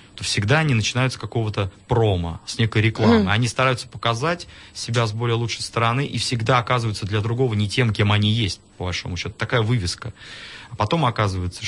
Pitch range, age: 100-125 Hz, 20-39